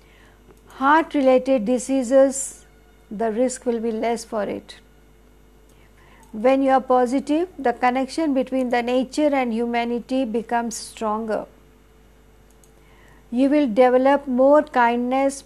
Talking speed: 110 wpm